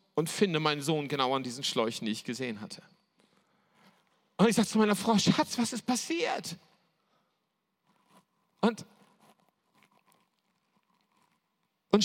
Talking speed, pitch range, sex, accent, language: 120 wpm, 140-210 Hz, male, German, German